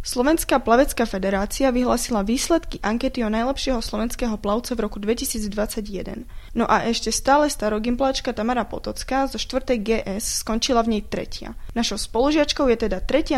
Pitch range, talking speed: 220-265 Hz, 145 wpm